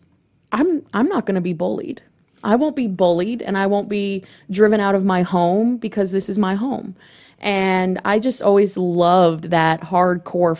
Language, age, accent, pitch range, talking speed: English, 20-39, American, 155-185 Hz, 180 wpm